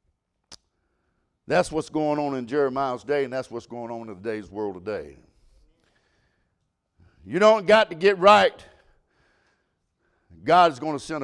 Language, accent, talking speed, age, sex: English, American, 140 wpm, 60-79, male